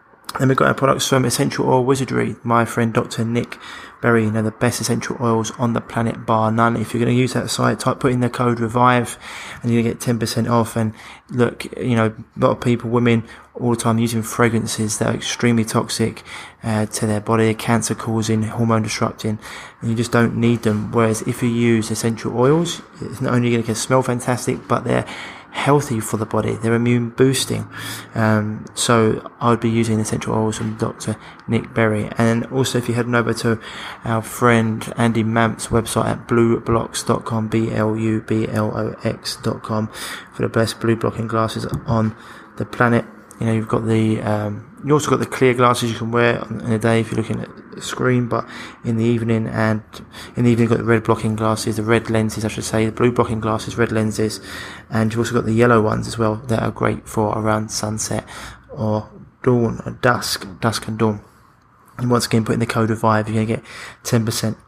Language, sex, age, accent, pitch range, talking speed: English, male, 20-39, British, 110-120 Hz, 205 wpm